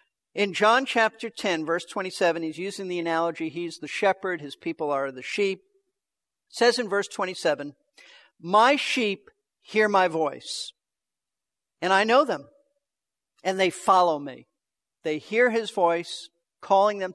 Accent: American